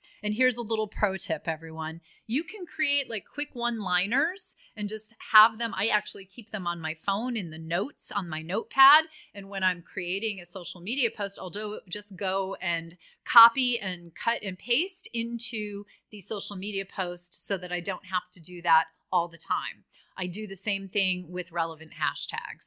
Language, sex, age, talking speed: English, female, 30-49, 190 wpm